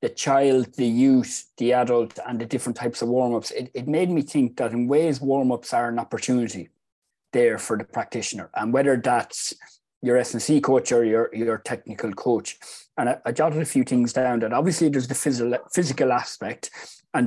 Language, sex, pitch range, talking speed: English, male, 115-135 Hz, 190 wpm